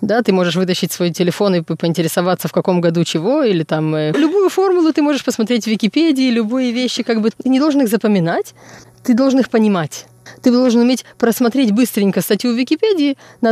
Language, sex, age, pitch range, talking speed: Russian, female, 20-39, 195-255 Hz, 190 wpm